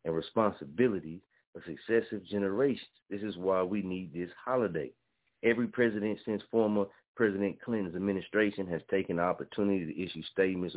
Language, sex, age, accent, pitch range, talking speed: English, male, 40-59, American, 85-105 Hz, 145 wpm